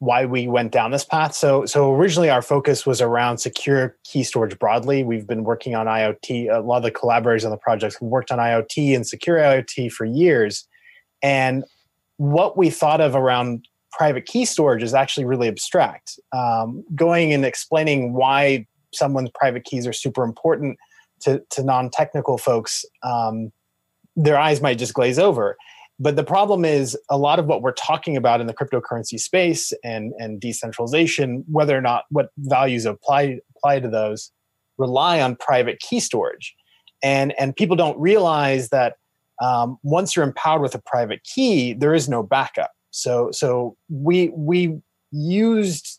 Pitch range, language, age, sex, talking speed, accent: 120-155 Hz, English, 30-49, male, 165 wpm, American